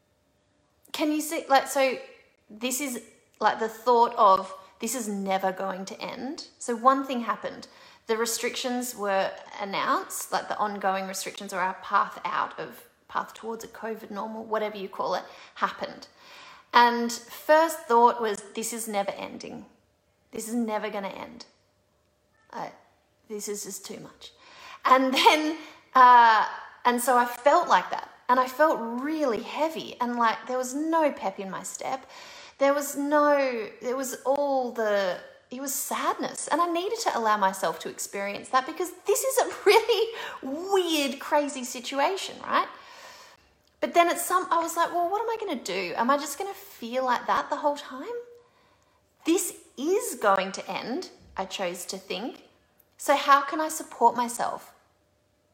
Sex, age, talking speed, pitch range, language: female, 30-49, 165 wpm, 215-315 Hz, English